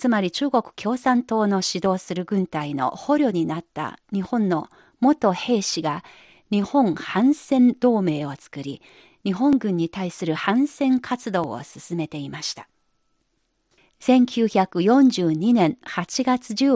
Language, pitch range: Japanese, 175-255 Hz